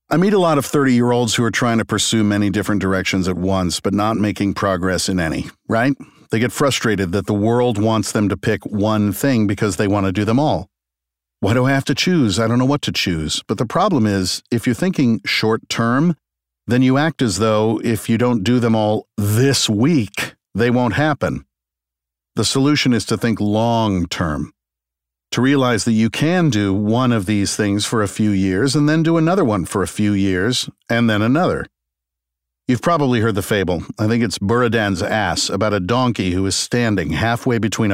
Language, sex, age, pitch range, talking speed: English, male, 50-69, 95-120 Hz, 200 wpm